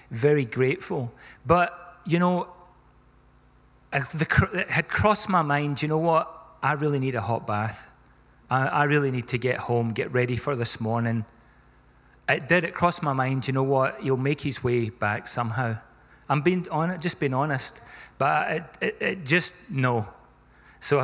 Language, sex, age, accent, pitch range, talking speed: English, male, 40-59, British, 125-170 Hz, 170 wpm